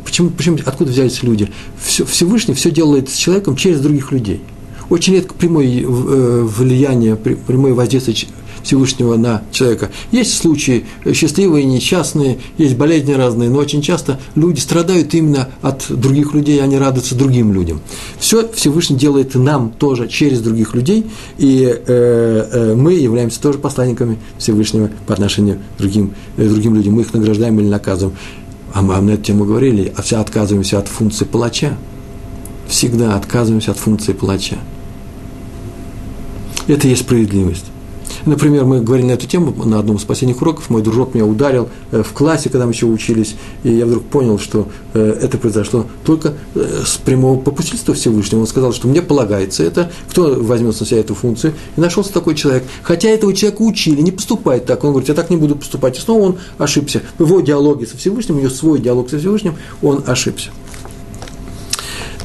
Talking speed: 165 wpm